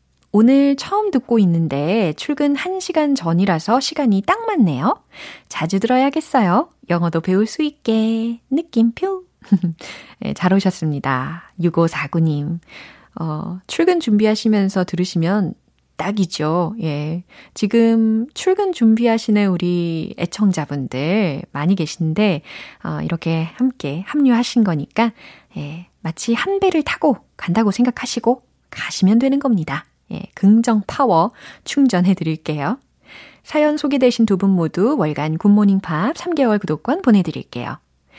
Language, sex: Korean, female